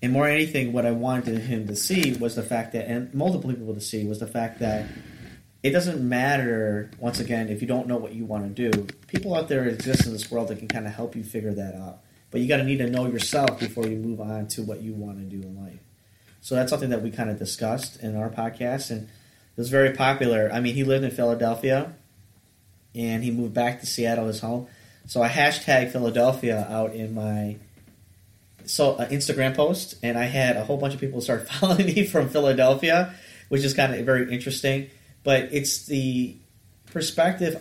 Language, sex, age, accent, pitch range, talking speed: English, male, 30-49, American, 110-135 Hz, 220 wpm